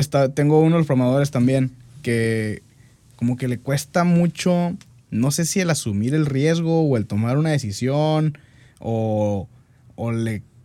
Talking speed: 160 wpm